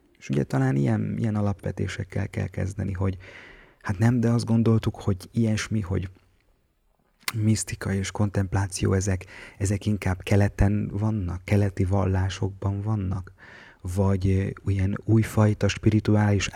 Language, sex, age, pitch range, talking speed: Hungarian, male, 30-49, 95-105 Hz, 115 wpm